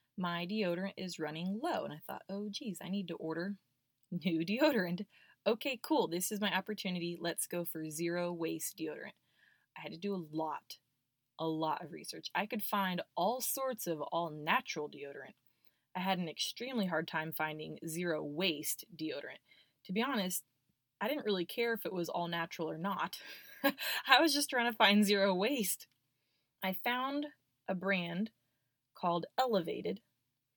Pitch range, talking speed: 160-210 Hz, 165 wpm